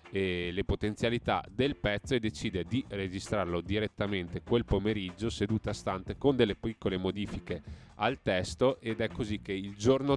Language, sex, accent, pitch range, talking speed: Italian, male, native, 90-110 Hz, 155 wpm